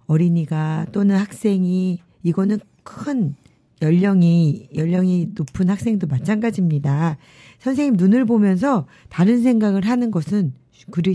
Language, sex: Korean, female